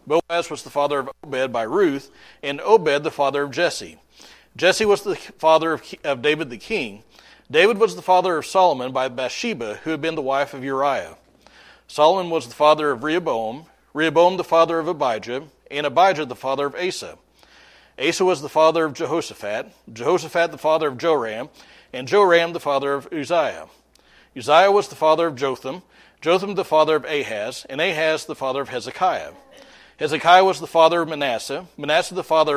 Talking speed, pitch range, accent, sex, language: 180 wpm, 140-170 Hz, American, male, English